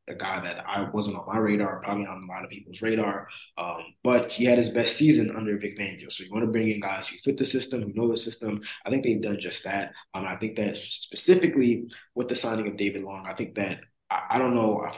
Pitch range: 100-115 Hz